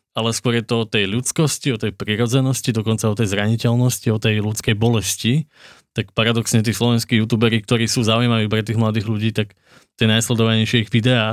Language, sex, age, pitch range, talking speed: Slovak, male, 20-39, 110-125 Hz, 185 wpm